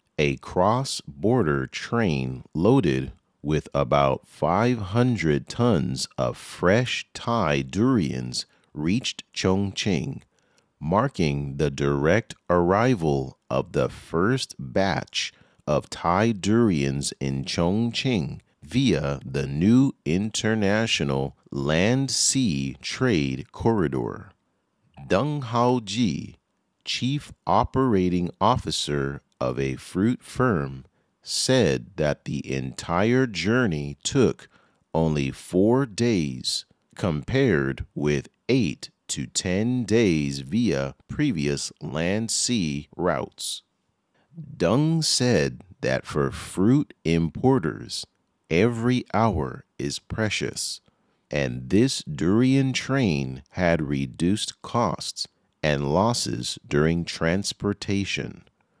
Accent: American